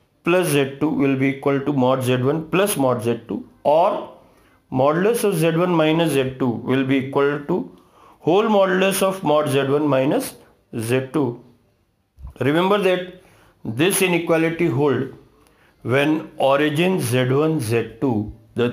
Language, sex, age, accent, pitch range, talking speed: English, male, 50-69, Indian, 125-165 Hz, 120 wpm